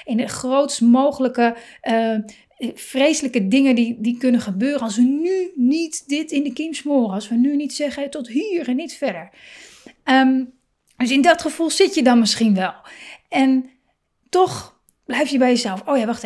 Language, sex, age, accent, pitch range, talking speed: Dutch, female, 30-49, Dutch, 230-275 Hz, 180 wpm